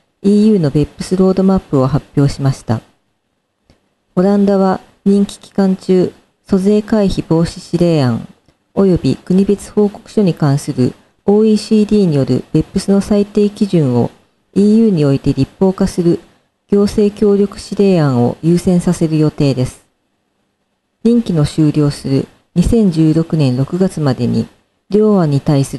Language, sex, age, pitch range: Japanese, female, 40-59, 140-205 Hz